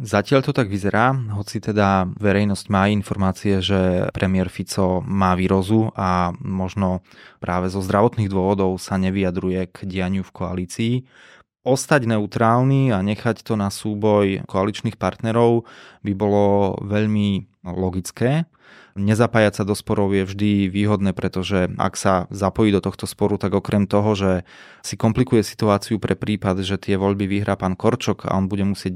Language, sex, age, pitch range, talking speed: Slovak, male, 20-39, 95-110 Hz, 150 wpm